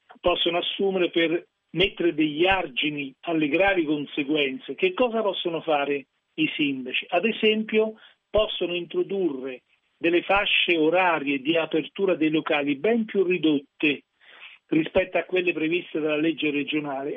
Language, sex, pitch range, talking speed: Italian, male, 155-200 Hz, 125 wpm